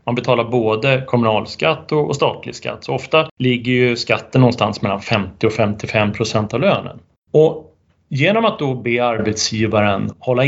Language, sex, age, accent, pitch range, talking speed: Swedish, male, 30-49, native, 110-150 Hz, 155 wpm